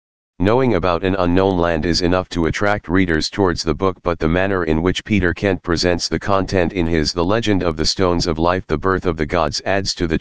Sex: male